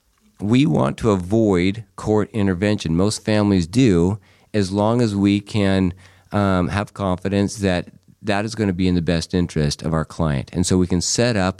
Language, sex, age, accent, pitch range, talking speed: English, male, 50-69, American, 85-105 Hz, 185 wpm